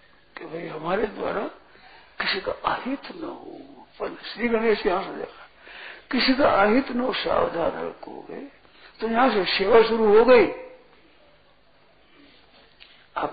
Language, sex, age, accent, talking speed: Hindi, male, 60-79, native, 125 wpm